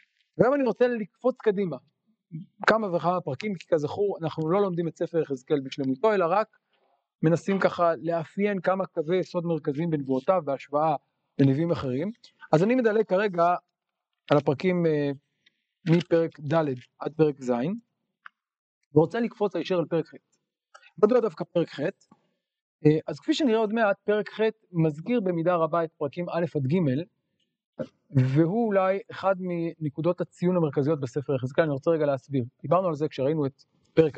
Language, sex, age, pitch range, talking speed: Hebrew, male, 40-59, 150-190 Hz, 150 wpm